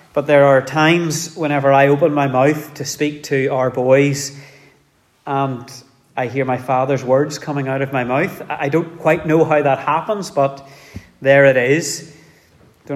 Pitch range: 130-155 Hz